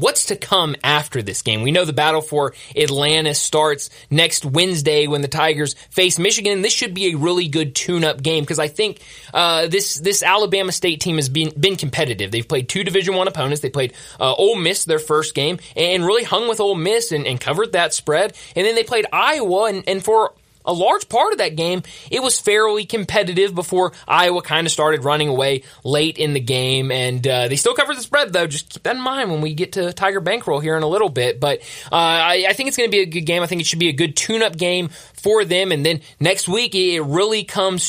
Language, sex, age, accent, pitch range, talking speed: English, male, 20-39, American, 150-195 Hz, 240 wpm